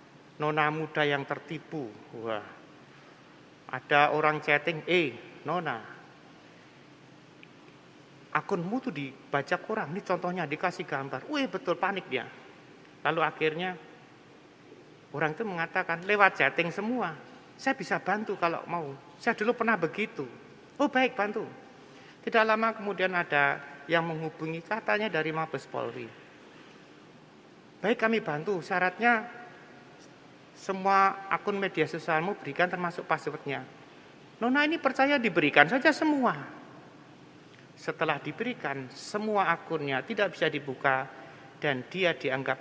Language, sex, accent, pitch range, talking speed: Indonesian, male, native, 140-195 Hz, 110 wpm